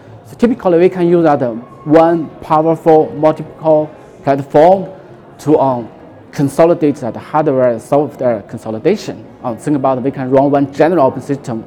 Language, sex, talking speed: English, male, 140 wpm